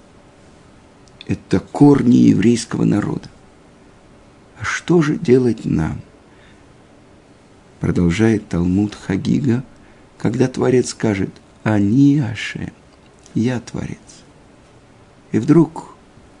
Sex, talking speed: male, 75 wpm